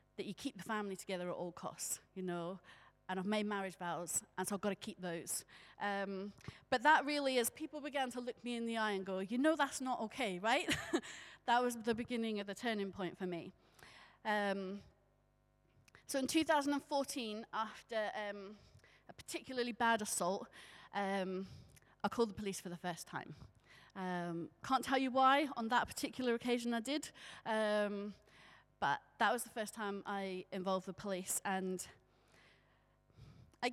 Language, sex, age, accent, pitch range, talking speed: English, female, 30-49, British, 185-240 Hz, 170 wpm